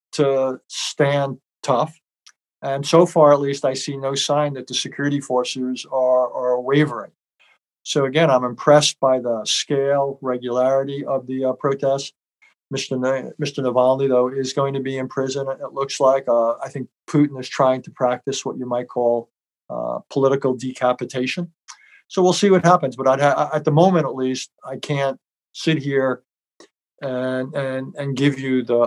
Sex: male